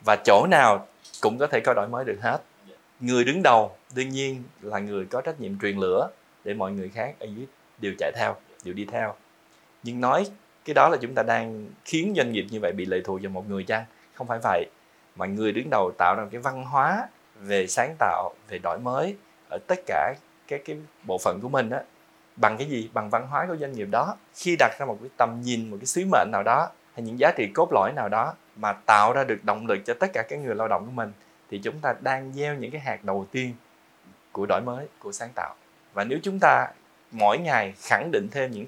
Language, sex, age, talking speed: Vietnamese, male, 20-39, 240 wpm